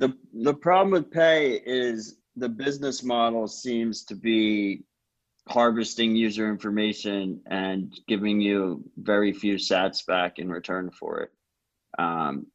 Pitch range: 95-115 Hz